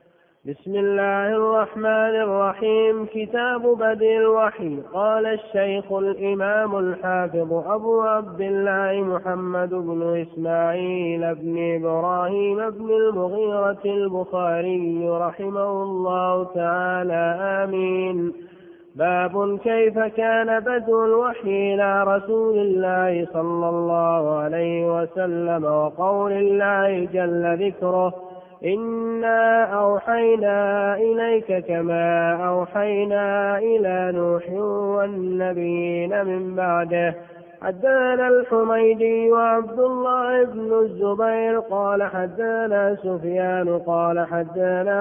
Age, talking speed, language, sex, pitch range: 20-39, 85 wpm, Arabic, male, 175-220 Hz